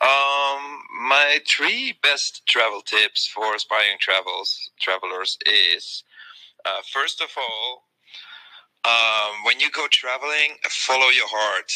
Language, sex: English, male